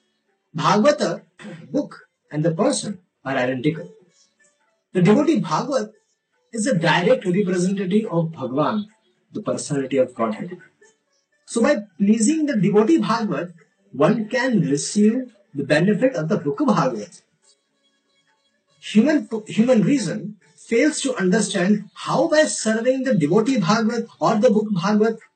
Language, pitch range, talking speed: English, 180-250 Hz, 120 wpm